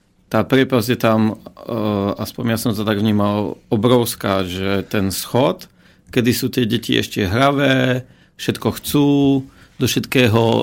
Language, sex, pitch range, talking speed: Slovak, male, 110-130 Hz, 140 wpm